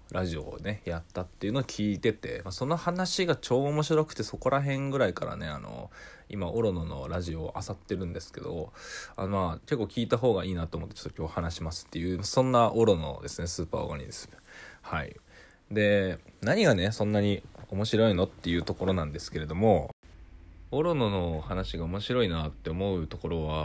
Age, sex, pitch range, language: 20-39, male, 85-135 Hz, Japanese